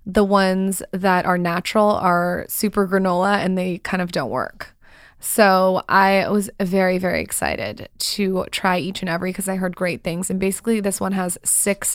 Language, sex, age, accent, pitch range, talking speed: English, female, 20-39, American, 180-205 Hz, 180 wpm